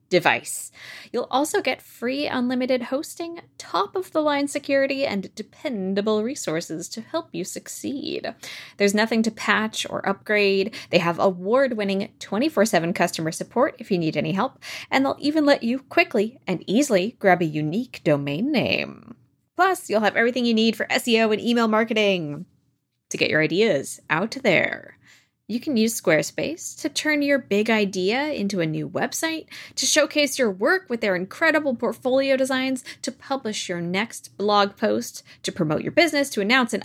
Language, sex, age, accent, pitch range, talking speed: English, female, 20-39, American, 185-255 Hz, 160 wpm